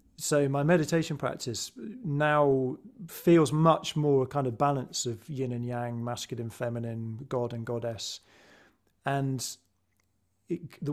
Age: 40-59